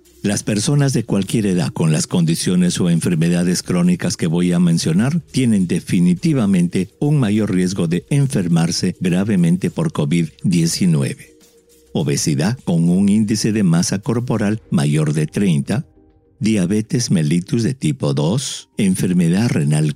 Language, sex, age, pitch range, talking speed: English, male, 50-69, 110-180 Hz, 125 wpm